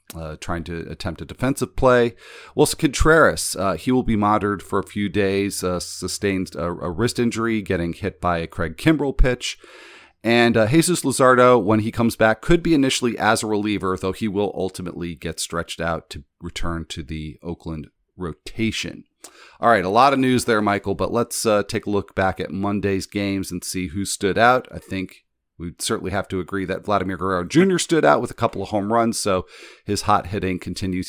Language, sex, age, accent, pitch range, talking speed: English, male, 40-59, American, 90-115 Hz, 205 wpm